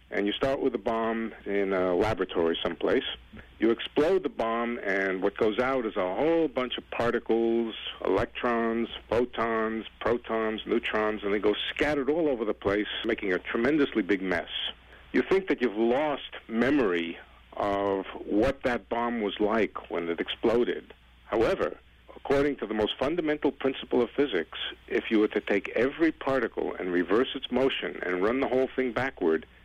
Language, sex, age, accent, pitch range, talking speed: English, male, 50-69, American, 105-130 Hz, 165 wpm